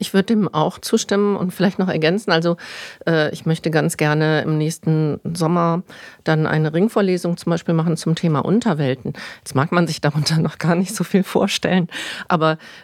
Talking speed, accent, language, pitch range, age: 180 wpm, German, German, 155-180 Hz, 50-69